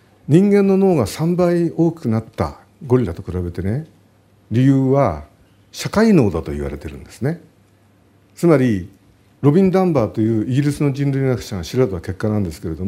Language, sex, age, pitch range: Japanese, male, 50-69, 100-155 Hz